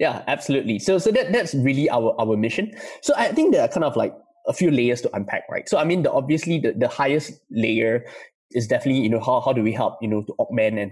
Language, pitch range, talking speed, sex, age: English, 115-170 Hz, 260 wpm, male, 20-39